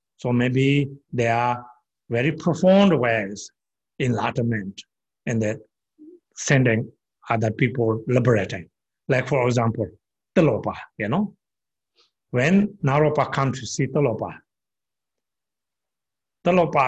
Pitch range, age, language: 120-160 Hz, 60-79, English